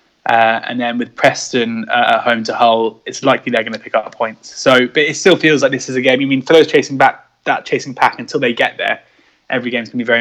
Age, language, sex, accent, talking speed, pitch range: 20-39, English, male, British, 275 wpm, 120-145 Hz